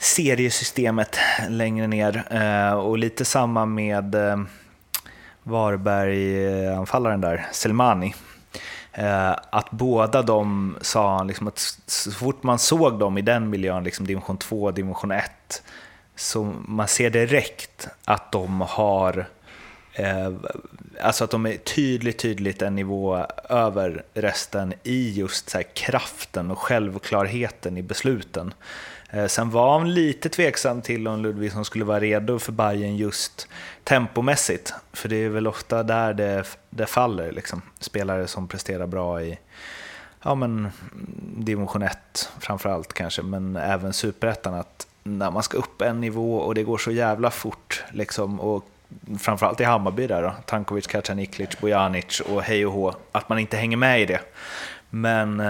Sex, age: male, 30-49